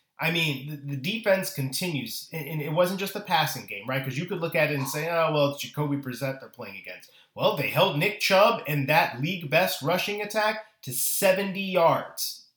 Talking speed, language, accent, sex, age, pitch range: 200 wpm, English, American, male, 30-49, 135-175 Hz